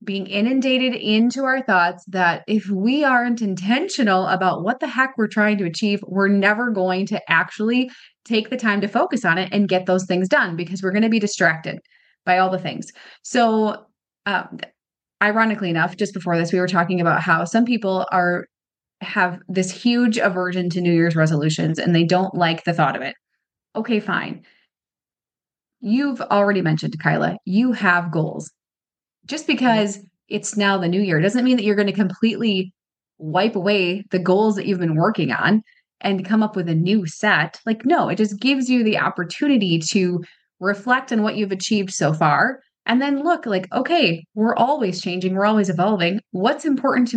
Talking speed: 185 wpm